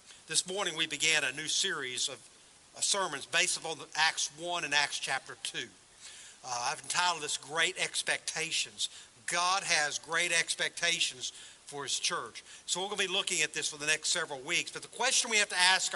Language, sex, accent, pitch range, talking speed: English, male, American, 155-195 Hz, 190 wpm